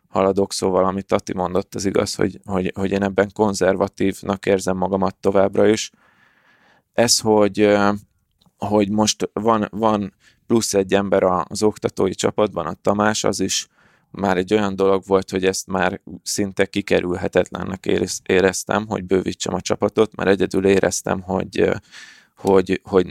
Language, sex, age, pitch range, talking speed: Hungarian, male, 20-39, 95-105 Hz, 140 wpm